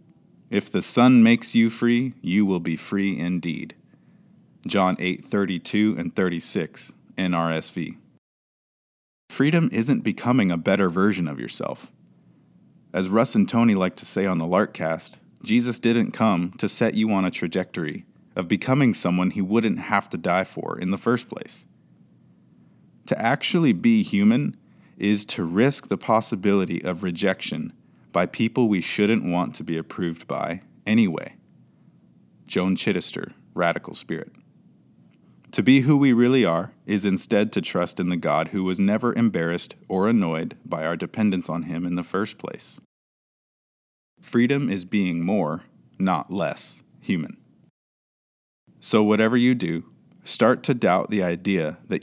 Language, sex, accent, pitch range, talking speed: English, male, American, 90-115 Hz, 145 wpm